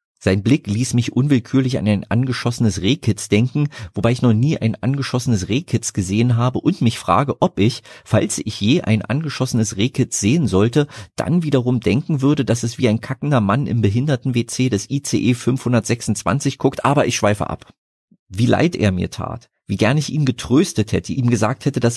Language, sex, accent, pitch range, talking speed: German, male, German, 100-130 Hz, 185 wpm